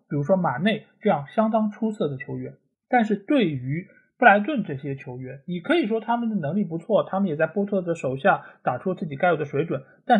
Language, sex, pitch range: Chinese, male, 150-220 Hz